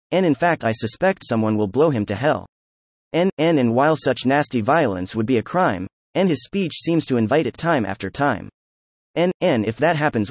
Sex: male